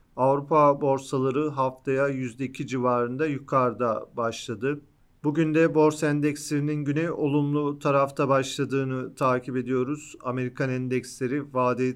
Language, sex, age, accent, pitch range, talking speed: Turkish, male, 40-59, native, 125-145 Hz, 100 wpm